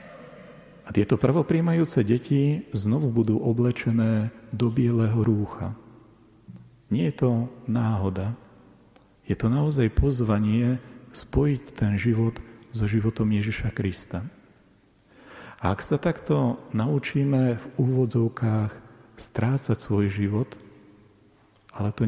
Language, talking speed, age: Slovak, 100 wpm, 40-59